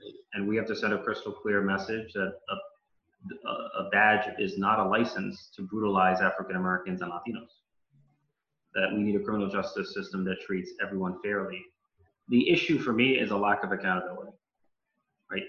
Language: Spanish